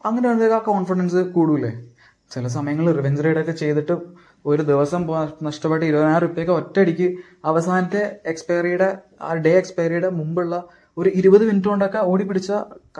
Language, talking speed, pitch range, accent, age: Malayalam, 125 wpm, 150-195 Hz, native, 20-39